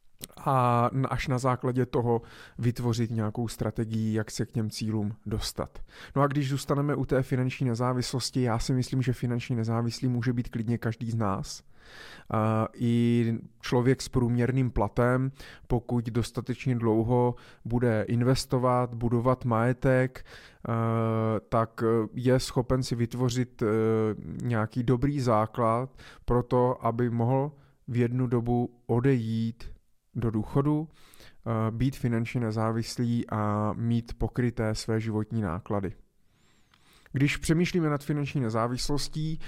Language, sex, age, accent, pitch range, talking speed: Czech, male, 20-39, native, 115-130 Hz, 120 wpm